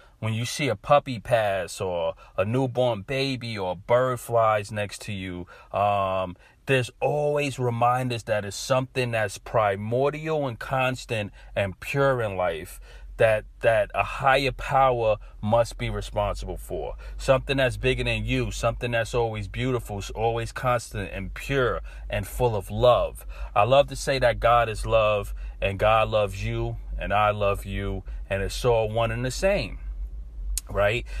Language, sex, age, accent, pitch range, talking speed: English, male, 40-59, American, 105-125 Hz, 160 wpm